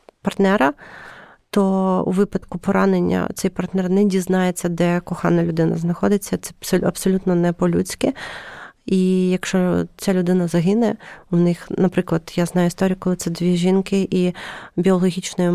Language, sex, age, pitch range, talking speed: Ukrainian, female, 30-49, 175-195 Hz, 130 wpm